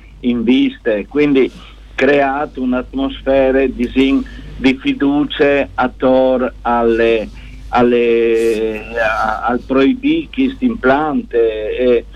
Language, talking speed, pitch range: Italian, 80 wpm, 115-145 Hz